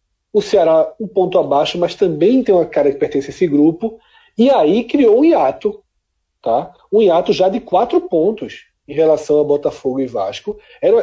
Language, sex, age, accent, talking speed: Portuguese, male, 40-59, Brazilian, 180 wpm